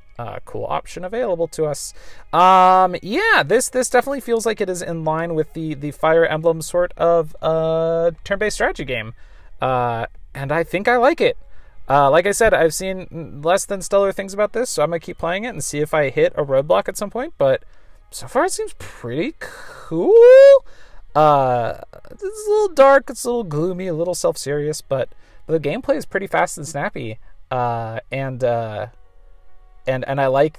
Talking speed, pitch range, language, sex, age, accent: 190 wpm, 135-190 Hz, English, male, 30-49, American